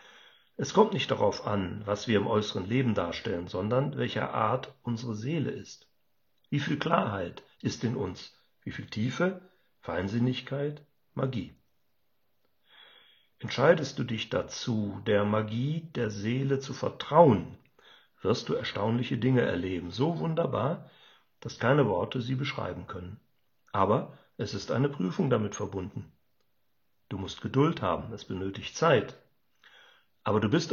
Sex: male